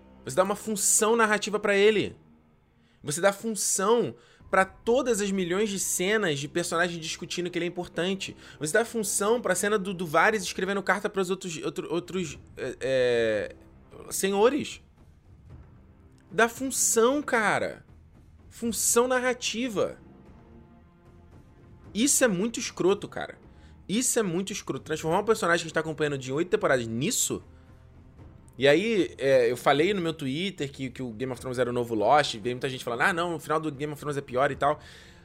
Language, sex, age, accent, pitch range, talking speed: Portuguese, male, 20-39, Brazilian, 135-215 Hz, 170 wpm